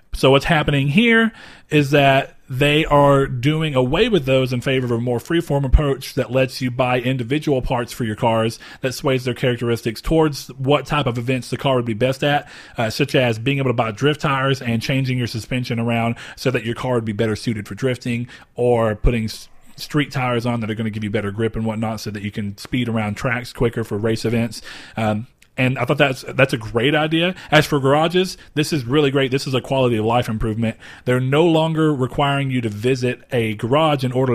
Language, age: English, 40-59